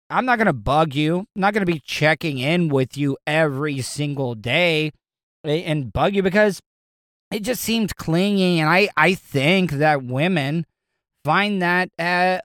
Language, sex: English, male